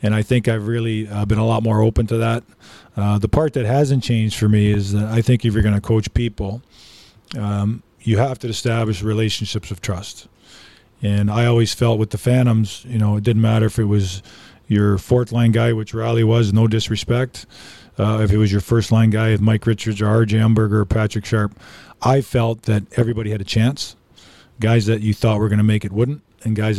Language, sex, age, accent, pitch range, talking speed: English, male, 40-59, American, 105-115 Hz, 215 wpm